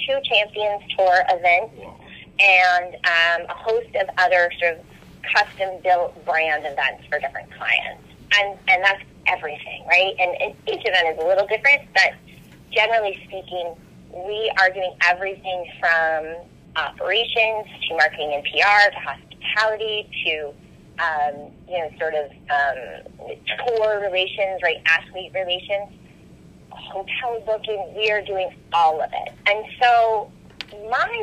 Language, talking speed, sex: English, 135 wpm, female